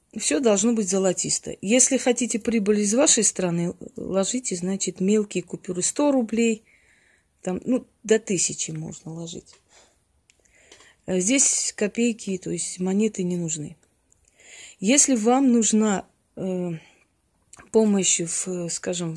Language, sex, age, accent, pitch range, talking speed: Russian, female, 30-49, native, 185-220 Hz, 115 wpm